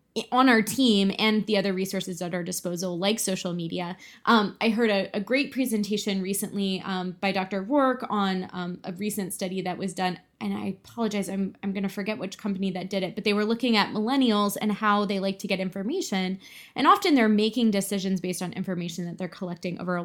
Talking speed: 215 wpm